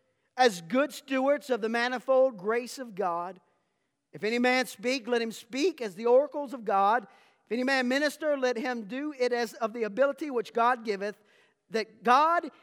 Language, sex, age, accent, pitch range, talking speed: English, male, 40-59, American, 210-270 Hz, 180 wpm